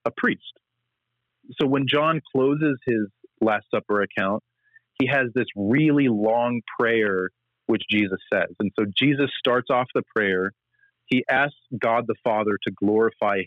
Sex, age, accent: male, 30-49, American